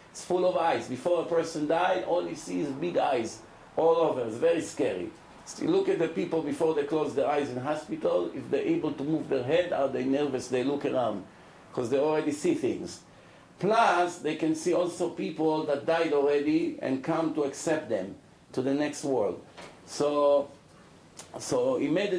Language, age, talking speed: English, 50-69, 190 wpm